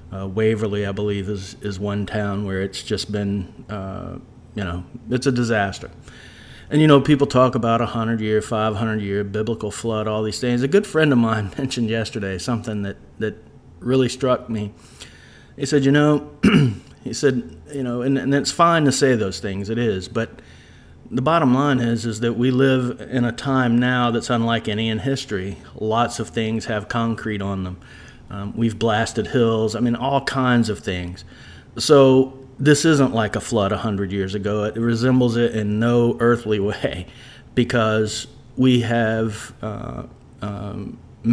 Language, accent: English, American